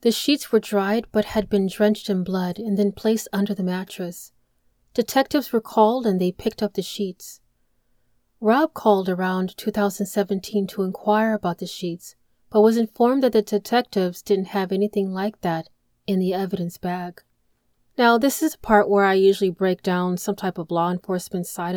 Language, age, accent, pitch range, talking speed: English, 30-49, American, 185-220 Hz, 180 wpm